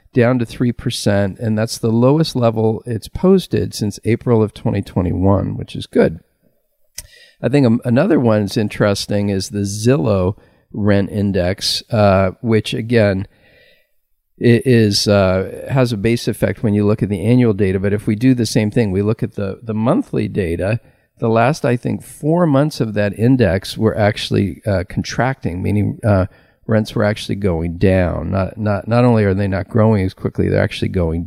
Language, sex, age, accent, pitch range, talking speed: English, male, 50-69, American, 100-120 Hz, 175 wpm